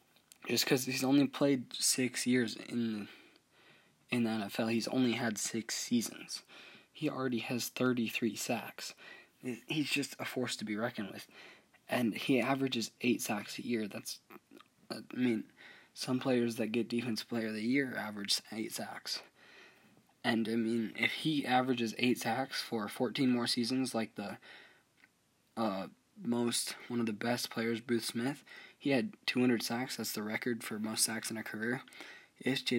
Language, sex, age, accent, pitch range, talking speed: English, male, 20-39, American, 115-130 Hz, 165 wpm